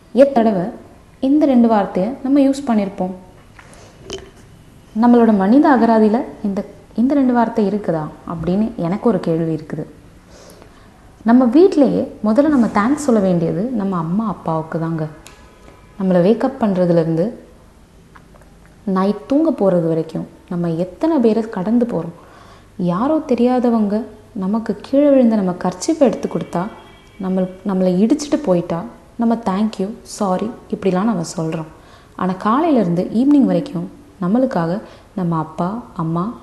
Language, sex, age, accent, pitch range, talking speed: Tamil, female, 20-39, native, 170-230 Hz, 115 wpm